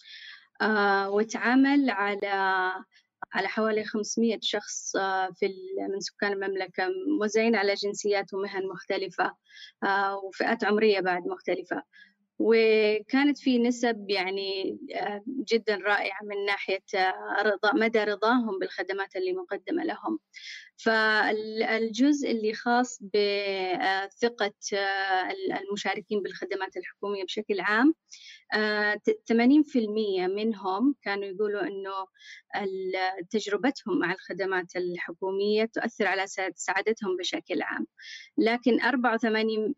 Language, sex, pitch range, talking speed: Arabic, female, 195-235 Hz, 100 wpm